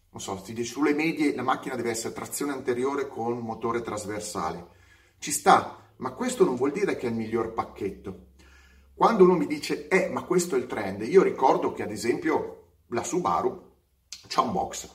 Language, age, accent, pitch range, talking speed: Italian, 30-49, native, 110-180 Hz, 190 wpm